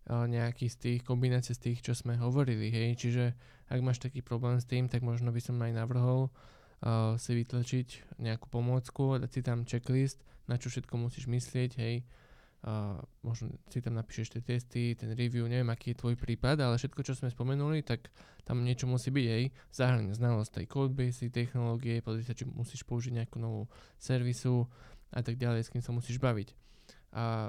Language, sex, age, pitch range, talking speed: Slovak, male, 20-39, 115-125 Hz, 190 wpm